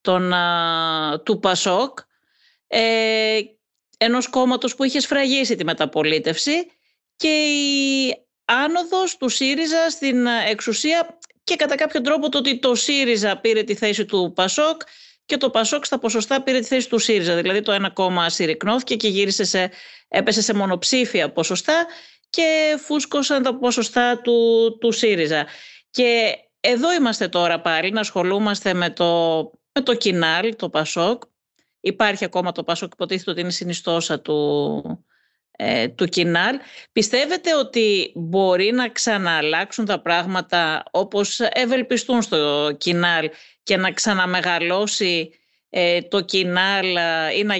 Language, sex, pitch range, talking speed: Greek, female, 175-250 Hz, 130 wpm